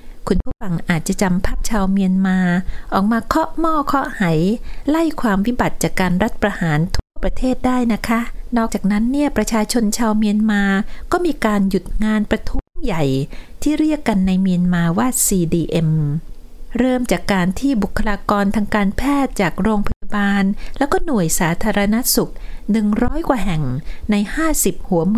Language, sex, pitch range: Thai, female, 185-245 Hz